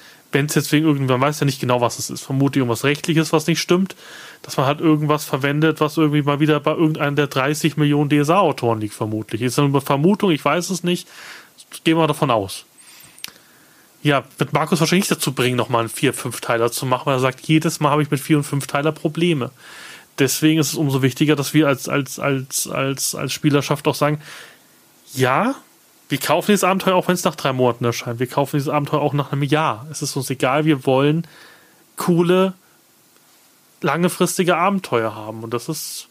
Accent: German